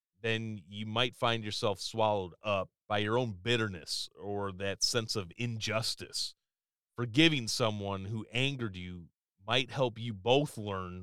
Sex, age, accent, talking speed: male, 30-49, American, 140 wpm